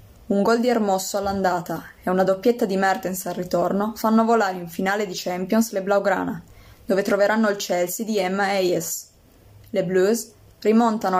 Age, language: 20-39, Italian